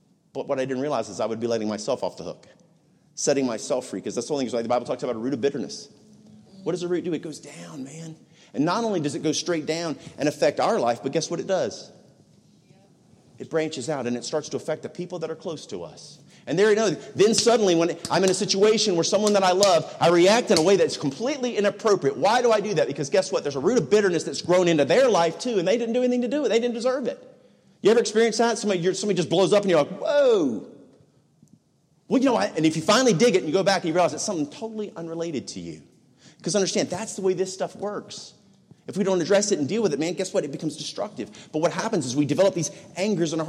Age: 40-59